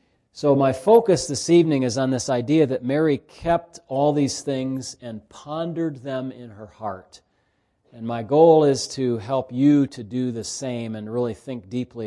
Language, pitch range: English, 110-140 Hz